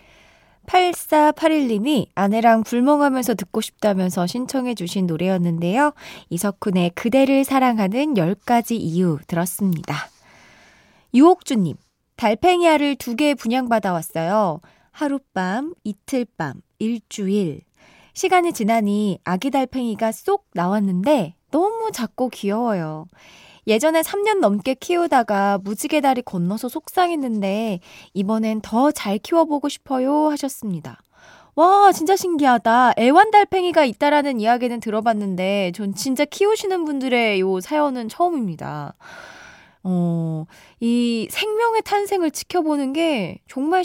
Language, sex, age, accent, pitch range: Korean, female, 20-39, native, 195-300 Hz